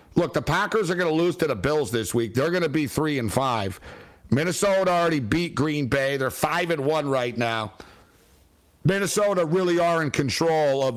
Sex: male